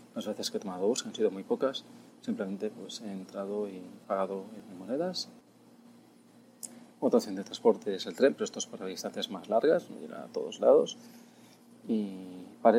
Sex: male